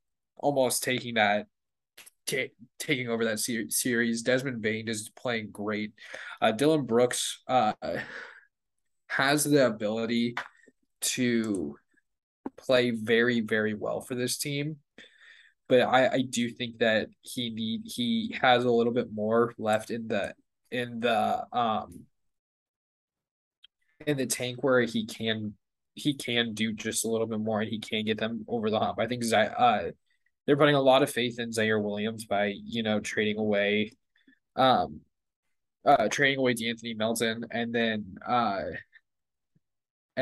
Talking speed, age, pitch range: 145 wpm, 20-39, 110-130 Hz